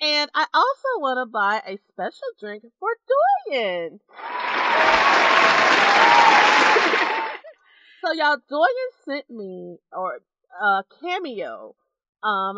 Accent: American